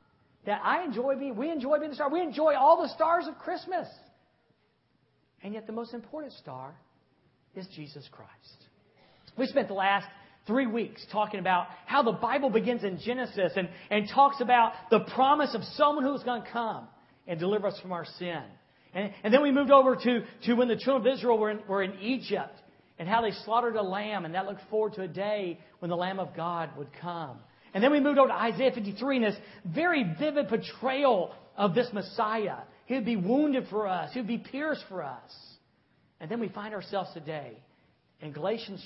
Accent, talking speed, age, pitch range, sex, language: American, 200 wpm, 50-69, 180-255 Hz, male, English